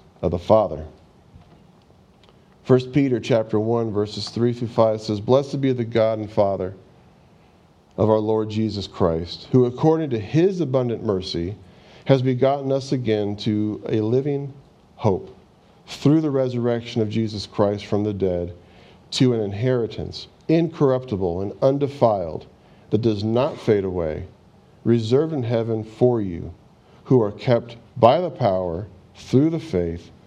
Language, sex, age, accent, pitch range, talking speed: English, male, 50-69, American, 95-125 Hz, 145 wpm